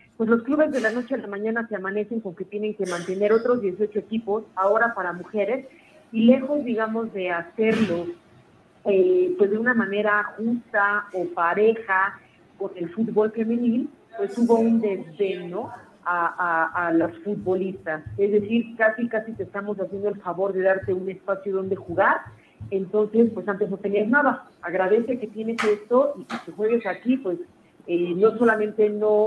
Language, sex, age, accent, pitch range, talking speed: Spanish, female, 40-59, Mexican, 185-215 Hz, 170 wpm